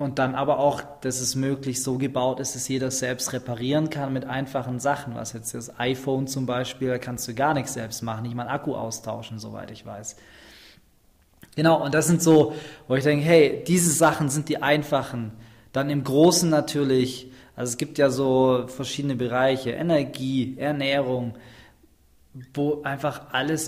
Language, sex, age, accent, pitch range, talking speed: German, male, 20-39, German, 125-150 Hz, 175 wpm